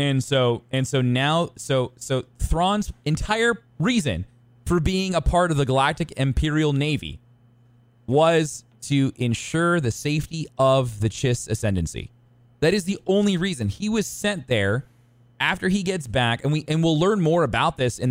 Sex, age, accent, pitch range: male, 20-39, American, 110-145 Hz